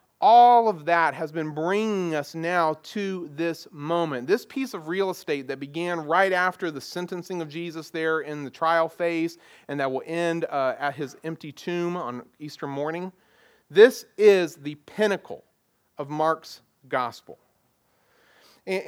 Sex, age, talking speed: male, 40-59, 155 wpm